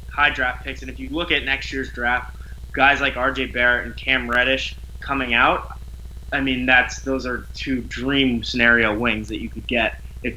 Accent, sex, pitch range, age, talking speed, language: American, male, 115-170 Hz, 20-39, 195 wpm, English